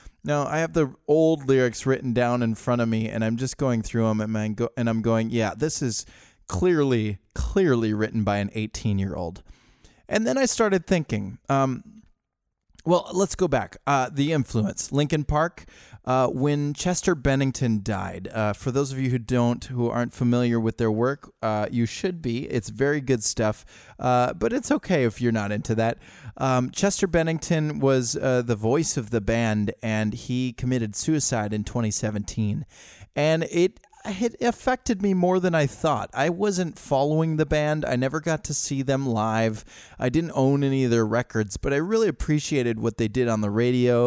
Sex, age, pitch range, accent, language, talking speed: male, 20-39, 115-155 Hz, American, English, 180 wpm